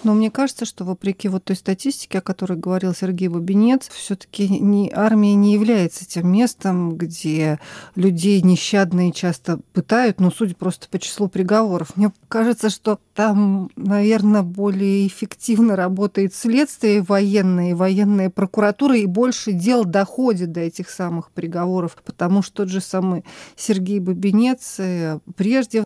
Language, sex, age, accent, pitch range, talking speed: Russian, female, 40-59, native, 180-210 Hz, 140 wpm